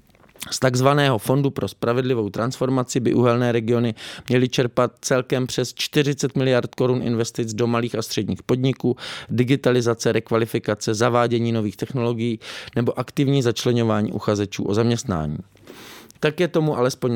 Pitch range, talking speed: 110-130 Hz, 130 wpm